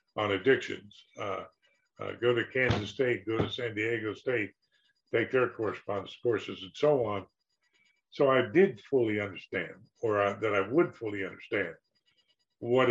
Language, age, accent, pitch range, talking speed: English, 50-69, American, 105-135 Hz, 155 wpm